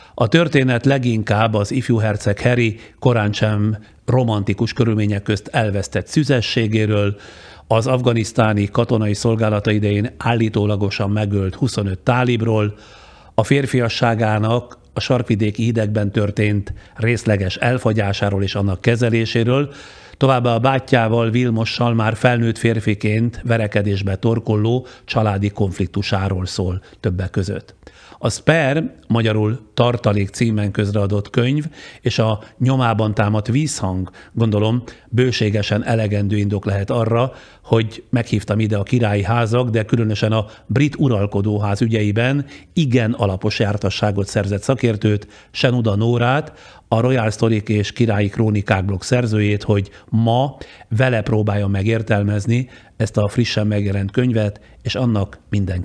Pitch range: 105-120 Hz